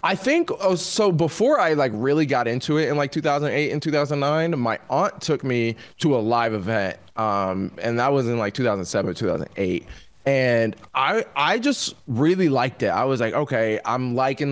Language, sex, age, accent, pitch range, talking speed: English, male, 20-39, American, 115-155 Hz, 185 wpm